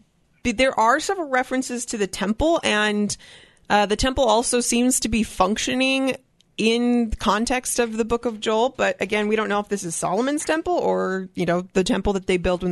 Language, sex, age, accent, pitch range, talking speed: English, female, 20-39, American, 185-235 Hz, 200 wpm